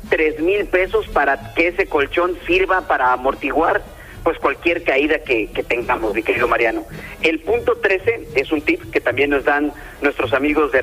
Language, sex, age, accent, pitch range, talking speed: Spanish, male, 40-59, Mexican, 150-210 Hz, 175 wpm